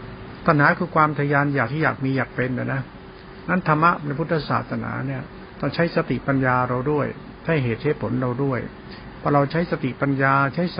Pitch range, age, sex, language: 125-150 Hz, 70-89, male, Thai